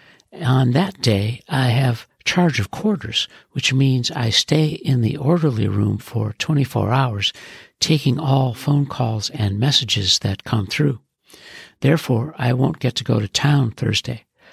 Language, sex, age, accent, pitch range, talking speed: English, male, 60-79, American, 115-150 Hz, 155 wpm